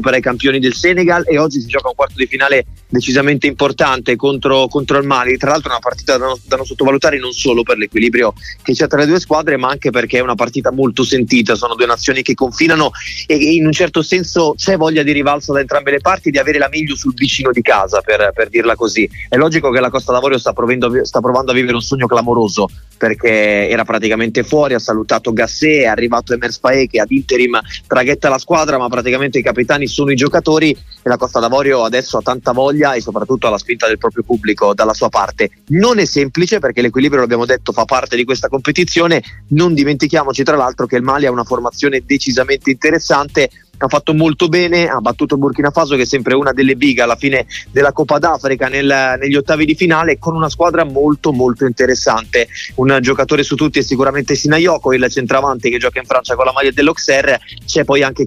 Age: 30-49